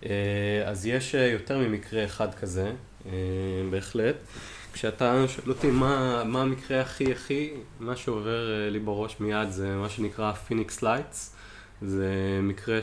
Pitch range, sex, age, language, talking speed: 95-115 Hz, male, 20-39, Hebrew, 125 wpm